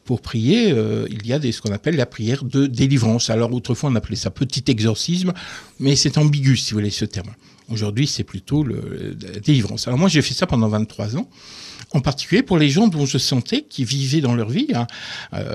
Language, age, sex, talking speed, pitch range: French, 60-79, male, 220 wpm, 110-150 Hz